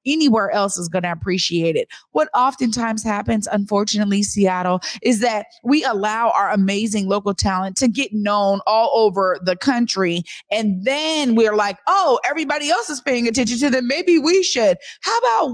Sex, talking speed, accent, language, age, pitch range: female, 170 wpm, American, English, 30-49, 185-245 Hz